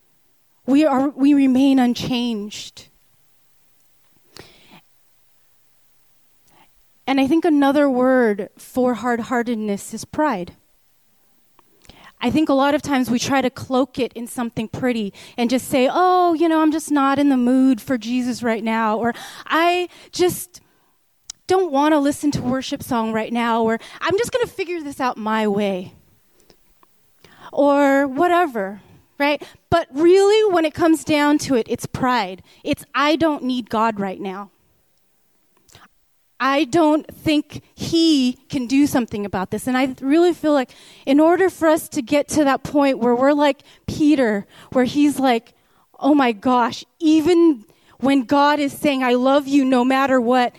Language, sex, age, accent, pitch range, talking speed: English, female, 30-49, American, 235-295 Hz, 155 wpm